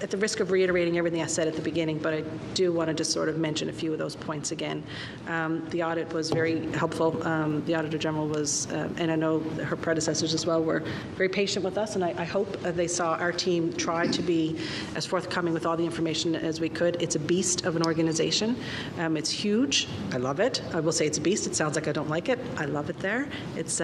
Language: English